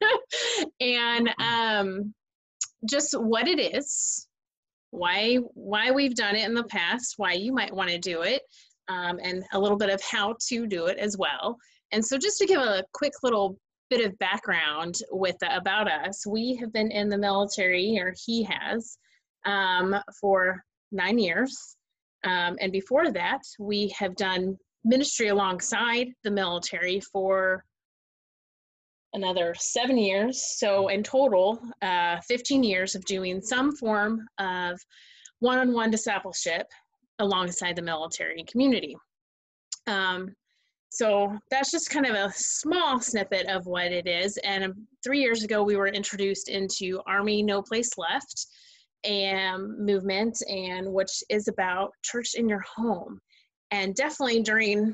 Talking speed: 145 wpm